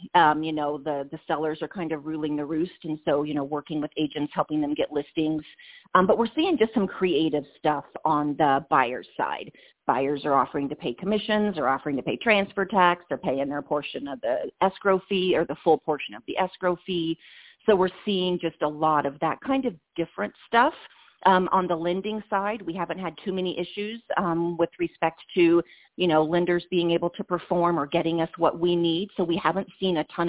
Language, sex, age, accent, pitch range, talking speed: English, female, 40-59, American, 155-190 Hz, 215 wpm